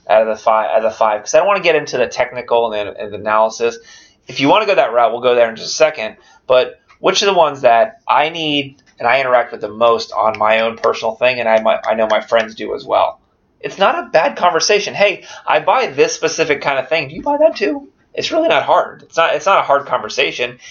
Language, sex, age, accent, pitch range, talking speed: English, male, 20-39, American, 110-150 Hz, 270 wpm